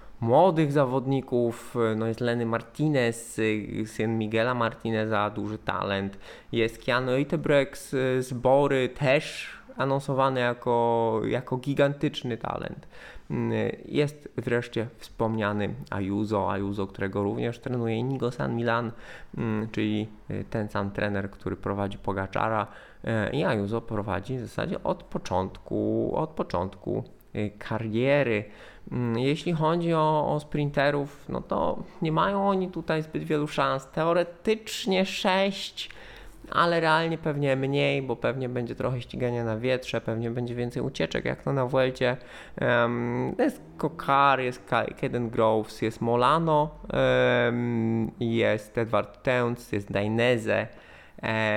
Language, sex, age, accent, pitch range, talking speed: Polish, male, 20-39, native, 110-140 Hz, 115 wpm